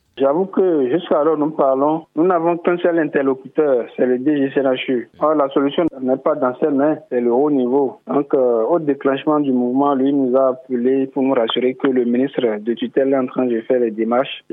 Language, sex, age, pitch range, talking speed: French, male, 50-69, 120-140 Hz, 210 wpm